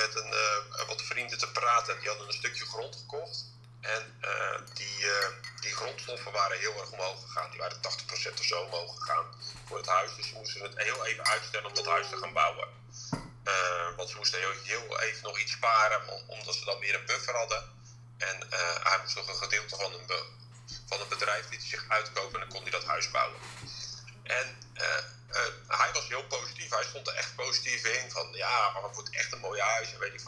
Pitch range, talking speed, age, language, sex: 120-130 Hz, 220 wpm, 30-49, Dutch, male